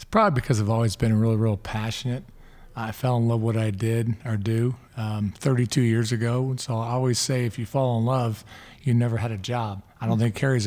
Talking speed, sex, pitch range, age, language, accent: 235 wpm, male, 110-125 Hz, 40-59, English, American